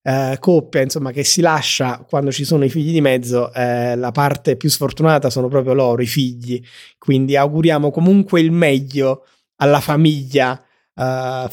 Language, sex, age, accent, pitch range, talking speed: Italian, male, 30-49, native, 135-165 Hz, 160 wpm